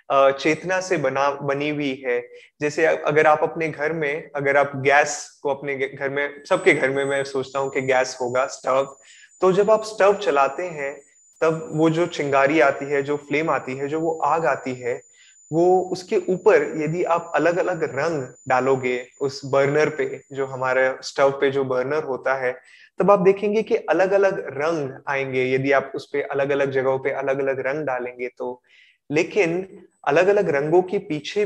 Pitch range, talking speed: 135-180 Hz, 185 wpm